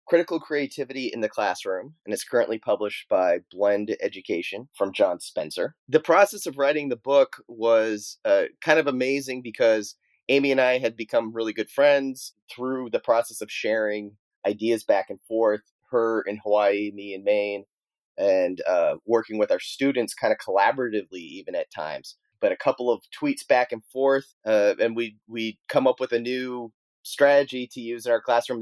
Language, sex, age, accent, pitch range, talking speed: English, male, 30-49, American, 115-170 Hz, 175 wpm